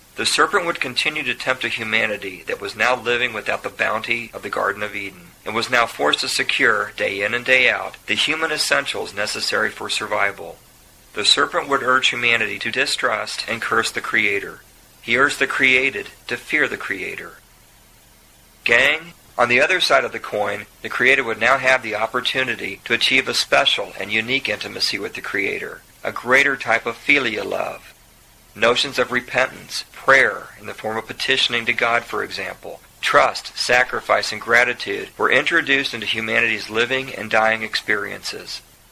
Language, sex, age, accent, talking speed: English, male, 40-59, American, 175 wpm